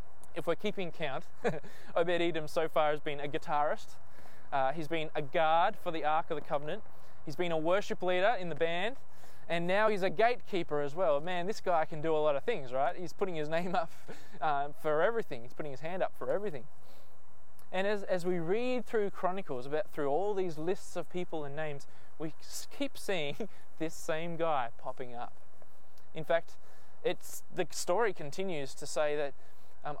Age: 20-39